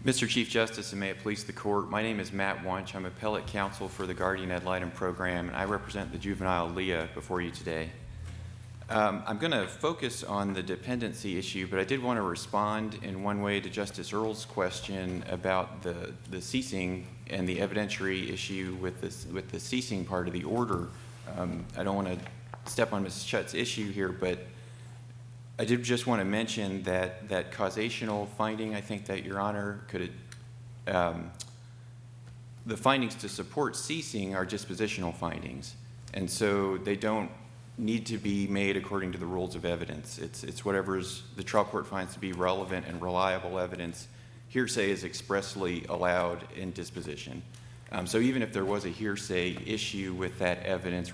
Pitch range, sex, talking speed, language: 90-110 Hz, male, 180 wpm, English